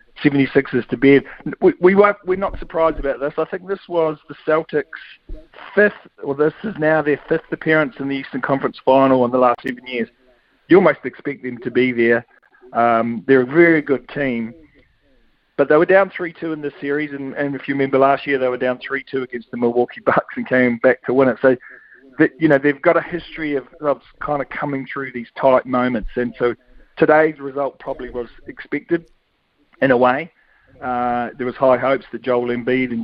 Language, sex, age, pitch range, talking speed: English, male, 50-69, 120-145 Hz, 205 wpm